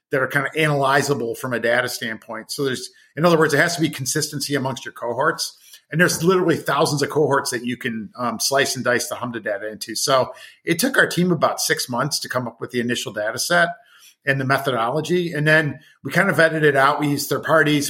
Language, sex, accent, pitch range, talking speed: English, male, American, 125-150 Hz, 235 wpm